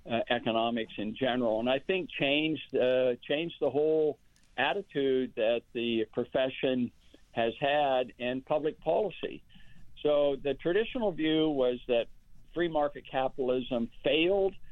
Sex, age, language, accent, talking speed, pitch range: male, 60-79, English, American, 125 wpm, 120-150 Hz